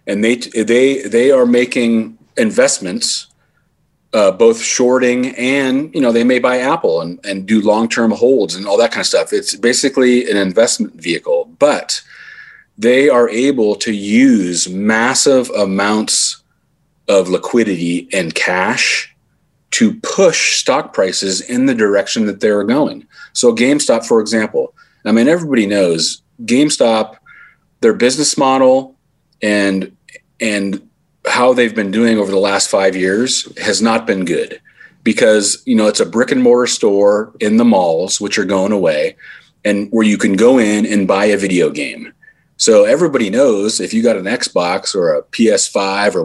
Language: English